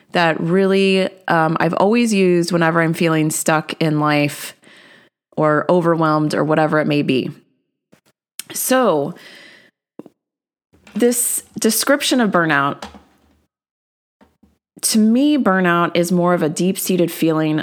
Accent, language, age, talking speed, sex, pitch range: American, English, 30-49, 110 wpm, female, 155-190 Hz